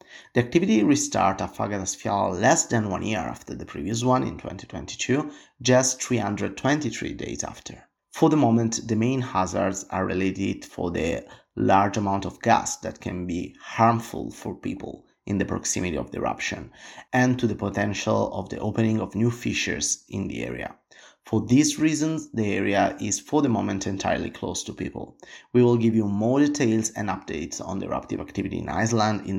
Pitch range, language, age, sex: 95-125 Hz, English, 30-49, male